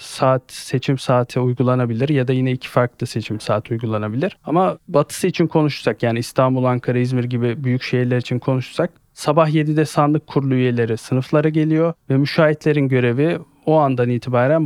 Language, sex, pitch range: Turkish, male, 125-150 Hz